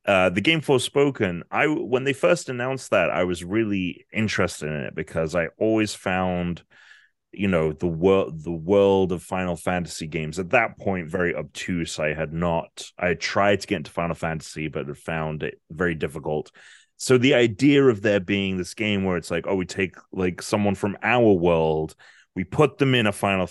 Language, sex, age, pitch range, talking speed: English, male, 30-49, 85-105 Hz, 195 wpm